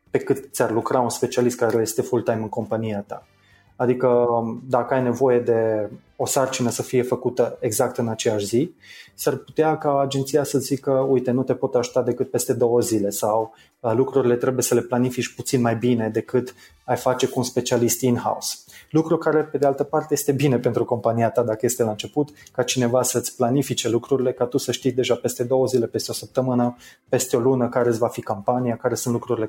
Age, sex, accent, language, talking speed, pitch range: 20-39, male, native, Romanian, 205 wpm, 115-135 Hz